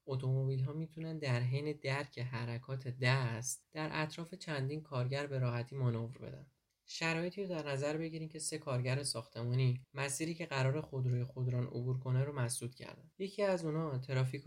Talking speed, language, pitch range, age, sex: 160 wpm, Persian, 125-150 Hz, 20-39, male